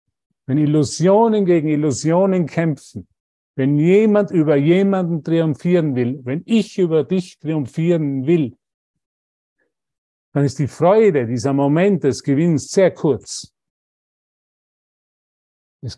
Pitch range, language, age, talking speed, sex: 125-170 Hz, German, 50-69, 105 wpm, male